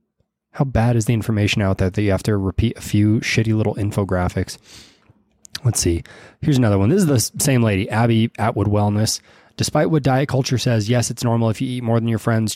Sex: male